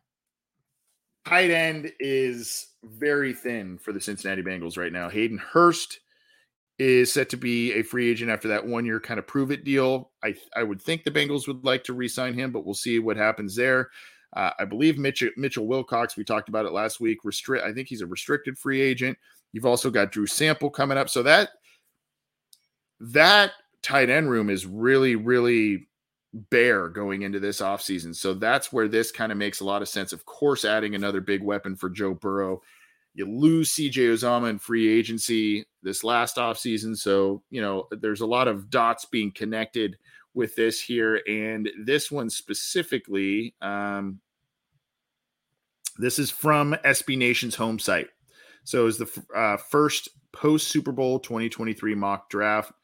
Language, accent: English, American